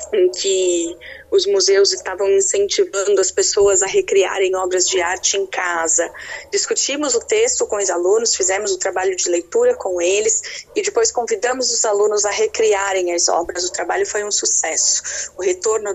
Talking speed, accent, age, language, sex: 165 wpm, Brazilian, 20-39, Portuguese, female